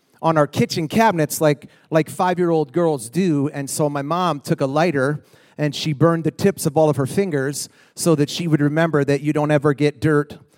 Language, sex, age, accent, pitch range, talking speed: English, male, 30-49, American, 145-175 Hz, 210 wpm